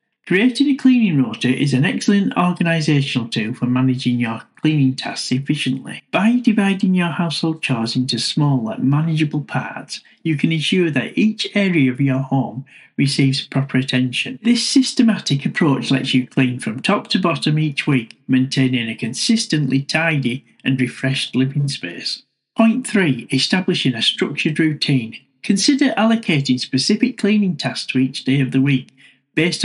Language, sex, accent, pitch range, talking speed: English, male, British, 130-195 Hz, 150 wpm